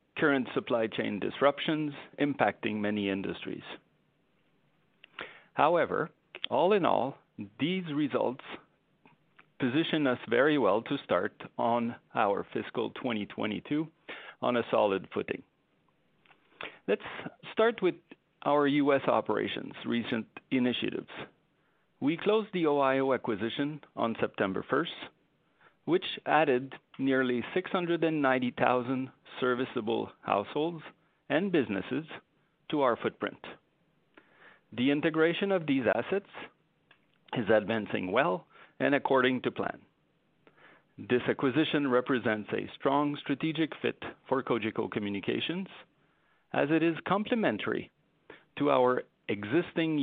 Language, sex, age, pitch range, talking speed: English, male, 50-69, 120-160 Hz, 105 wpm